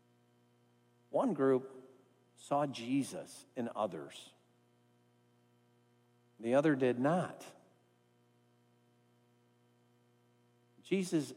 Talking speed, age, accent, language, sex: 60 wpm, 50-69, American, English, male